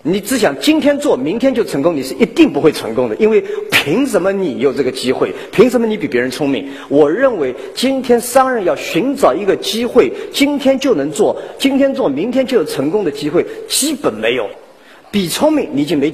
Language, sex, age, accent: Chinese, male, 50-69, native